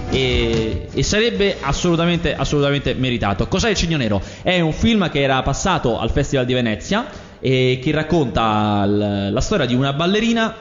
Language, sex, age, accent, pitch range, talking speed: Italian, male, 20-39, native, 115-165 Hz, 165 wpm